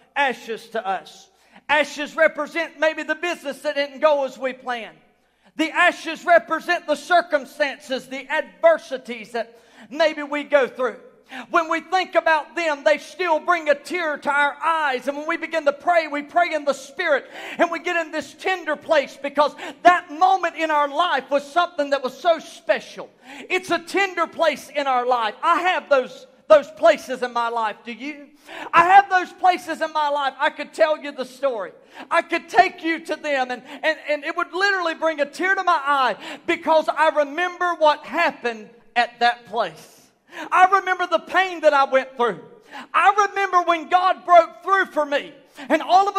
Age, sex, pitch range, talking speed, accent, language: 40-59, male, 280-345 Hz, 185 wpm, American, English